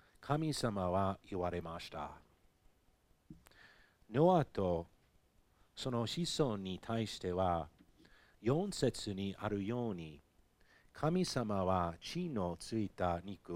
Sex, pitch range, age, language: male, 90-115 Hz, 50-69, Japanese